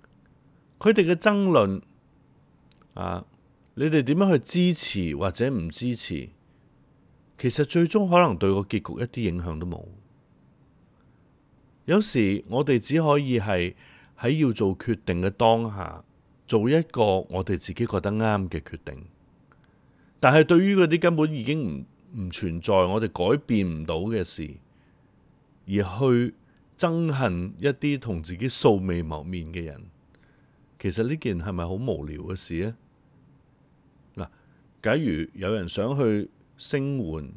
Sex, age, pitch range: male, 30-49, 90-135 Hz